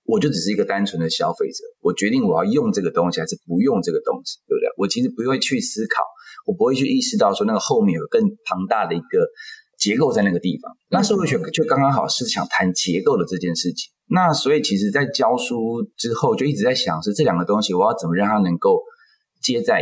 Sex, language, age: male, Chinese, 20-39